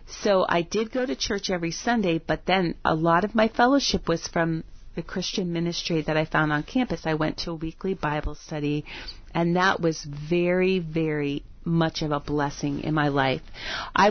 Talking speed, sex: 190 wpm, female